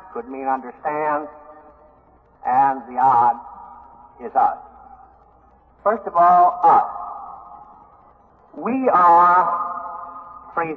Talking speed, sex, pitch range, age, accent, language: 85 wpm, male, 150-210 Hz, 60-79, American, English